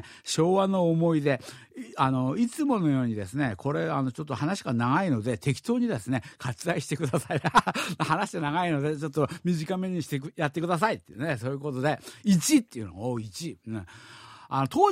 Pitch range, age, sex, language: 120-170 Hz, 50-69, male, Japanese